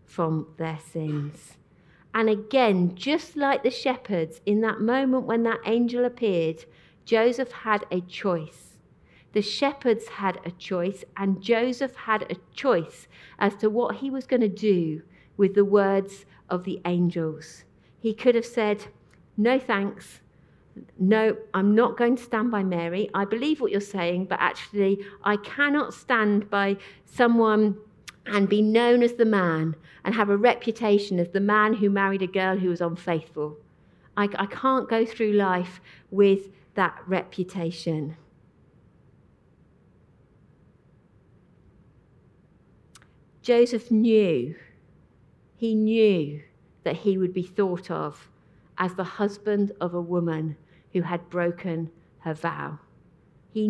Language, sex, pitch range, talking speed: English, female, 175-220 Hz, 135 wpm